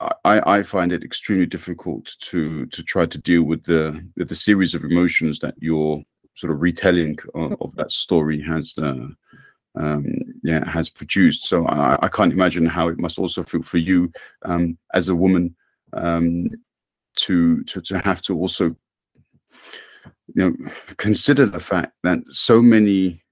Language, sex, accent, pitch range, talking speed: English, male, British, 80-90 Hz, 165 wpm